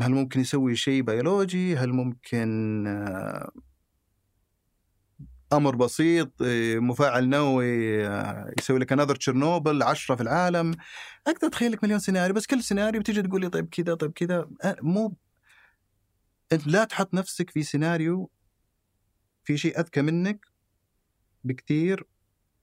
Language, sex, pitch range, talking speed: Arabic, male, 105-150 Hz, 115 wpm